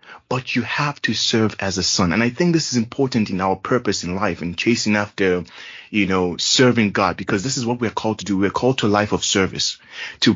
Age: 20-39